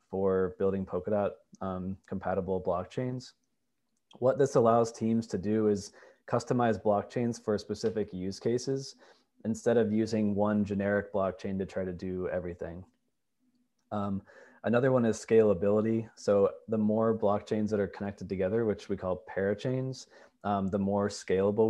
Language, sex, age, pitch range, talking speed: English, male, 20-39, 95-110 Hz, 140 wpm